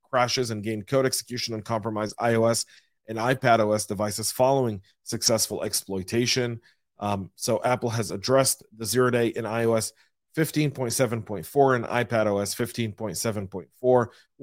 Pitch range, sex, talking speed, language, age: 110-125 Hz, male, 125 wpm, English, 40-59